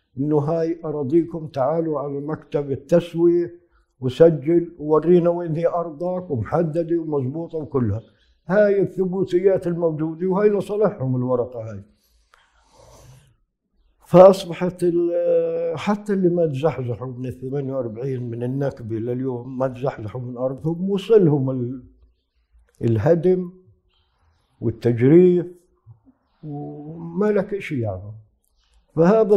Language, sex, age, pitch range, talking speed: Arabic, male, 50-69, 125-165 Hz, 90 wpm